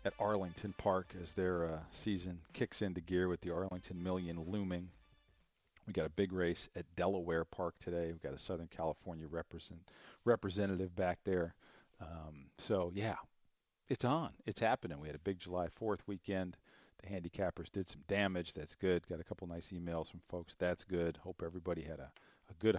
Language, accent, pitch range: English, American, 85-105 Hz